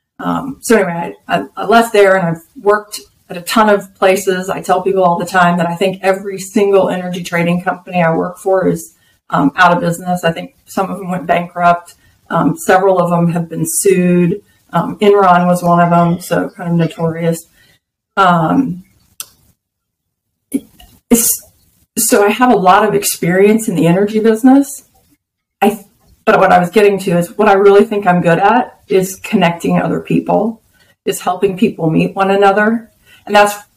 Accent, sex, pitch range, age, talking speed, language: American, female, 175-205 Hz, 40-59, 175 wpm, English